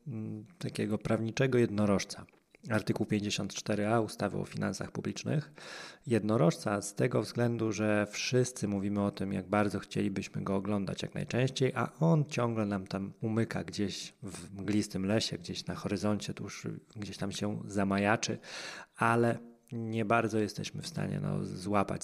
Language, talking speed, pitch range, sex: Polish, 135 wpm, 105-125 Hz, male